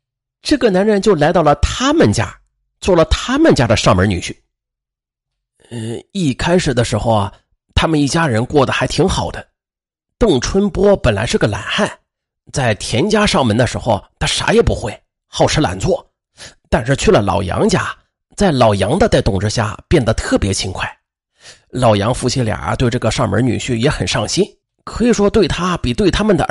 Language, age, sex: Chinese, 30-49, male